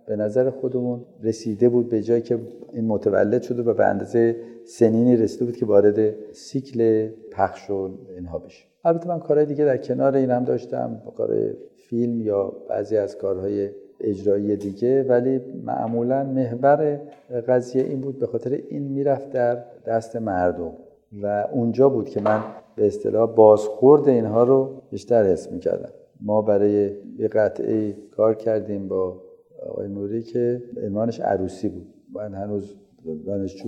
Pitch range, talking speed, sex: 105-130 Hz, 150 wpm, male